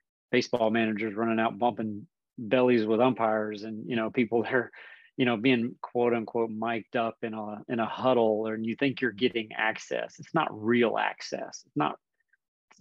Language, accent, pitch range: English, American, 110-120 Hz